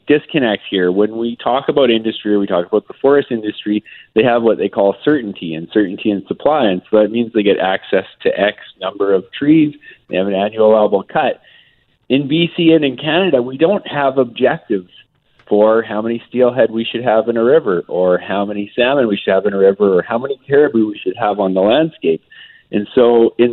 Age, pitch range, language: 40-59, 100-125 Hz, English